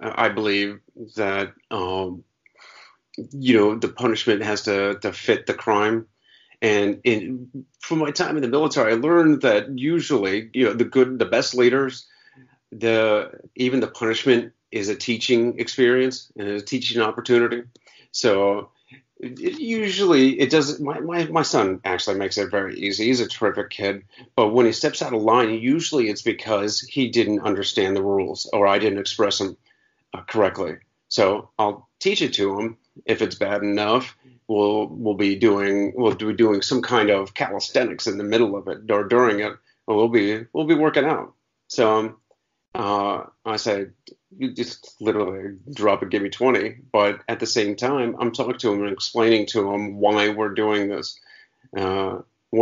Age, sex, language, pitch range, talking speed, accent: 40-59, male, English, 100-130 Hz, 170 wpm, American